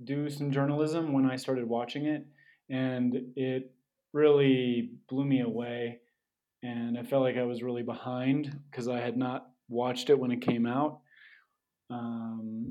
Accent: American